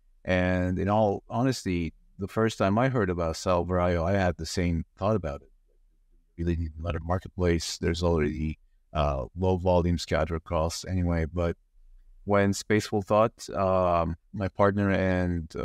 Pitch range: 85-100 Hz